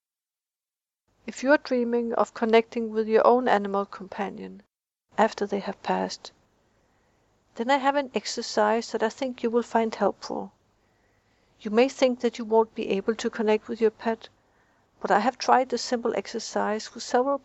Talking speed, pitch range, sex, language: 170 wpm, 200-240 Hz, female, English